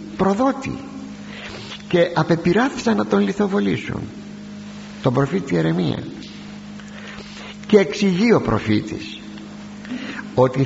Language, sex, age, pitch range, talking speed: Greek, male, 50-69, 130-210 Hz, 80 wpm